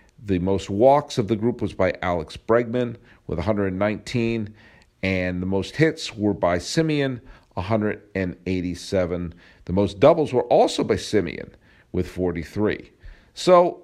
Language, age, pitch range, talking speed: English, 50-69, 100-135 Hz, 130 wpm